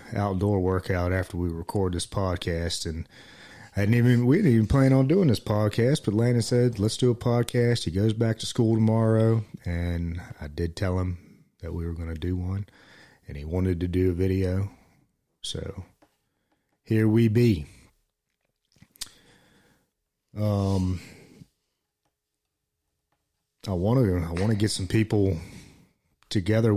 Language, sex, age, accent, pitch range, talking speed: English, male, 30-49, American, 90-110 Hz, 140 wpm